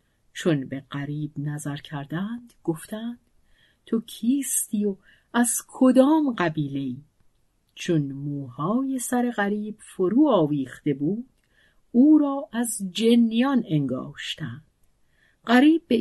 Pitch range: 155-245 Hz